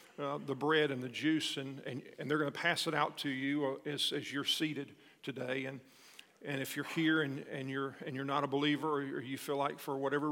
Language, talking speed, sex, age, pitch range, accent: English, 240 wpm, male, 50-69, 140-160 Hz, American